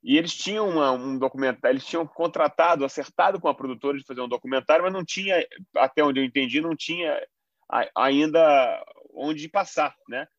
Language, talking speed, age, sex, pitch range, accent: Portuguese, 170 wpm, 30-49, male, 130-160 Hz, Brazilian